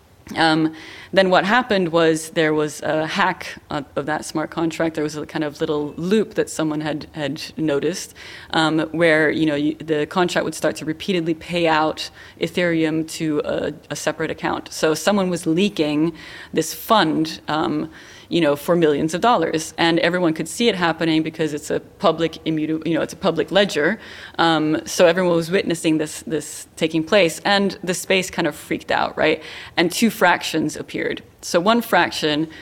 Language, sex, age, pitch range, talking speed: English, female, 20-39, 155-175 Hz, 180 wpm